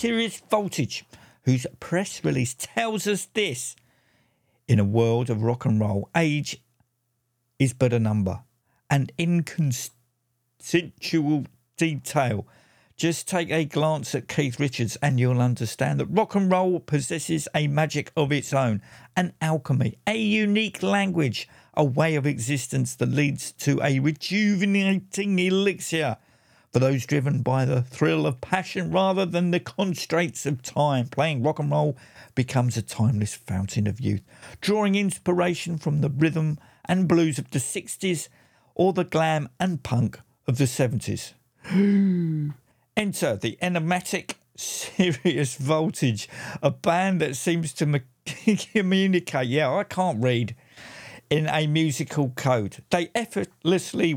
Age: 50-69